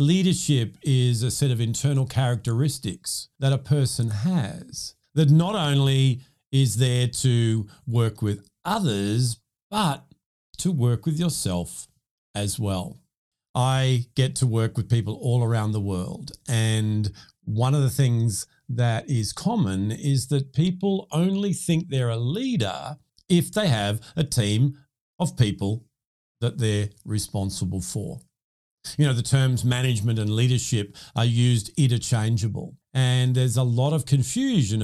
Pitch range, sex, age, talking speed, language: 115-150 Hz, male, 50-69, 140 wpm, English